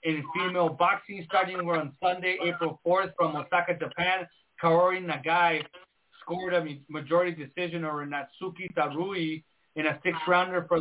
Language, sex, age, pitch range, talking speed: English, male, 30-49, 160-185 Hz, 135 wpm